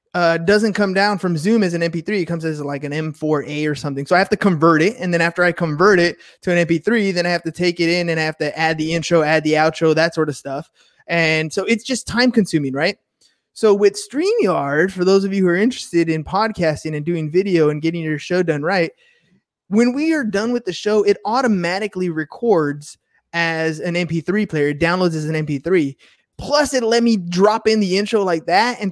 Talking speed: 230 wpm